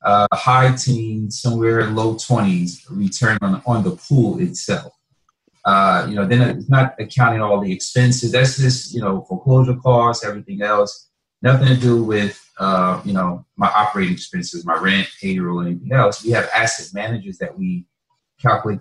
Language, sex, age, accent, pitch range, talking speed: English, male, 30-49, American, 95-130 Hz, 165 wpm